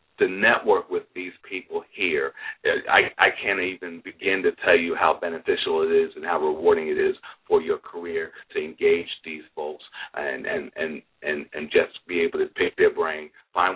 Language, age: English, 40-59